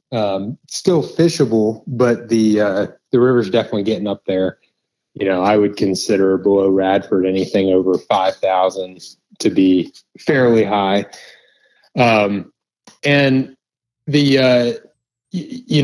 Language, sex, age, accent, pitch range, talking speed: English, male, 30-49, American, 100-125 Hz, 130 wpm